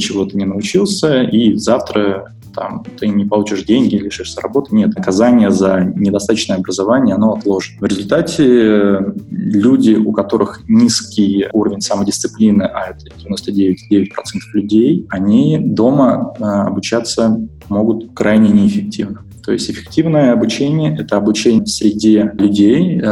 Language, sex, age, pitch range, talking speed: Russian, male, 20-39, 100-115 Hz, 120 wpm